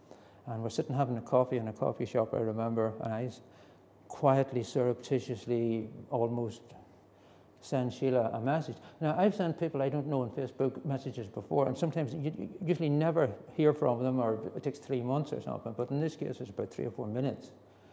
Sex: male